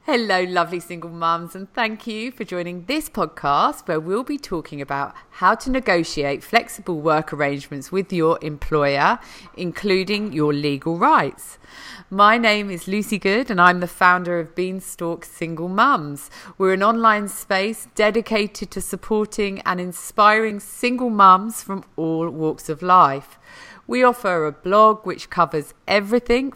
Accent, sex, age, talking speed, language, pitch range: British, female, 40-59, 145 wpm, English, 165-210 Hz